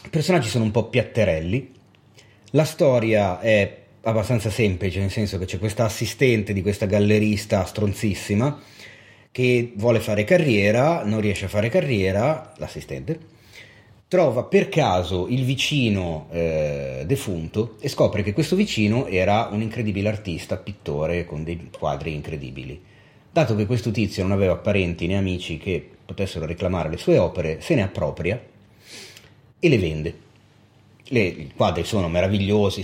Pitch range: 90-115 Hz